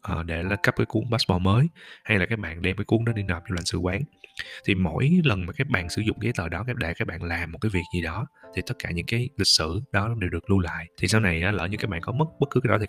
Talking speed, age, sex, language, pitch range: 305 wpm, 20-39, male, Vietnamese, 90-110 Hz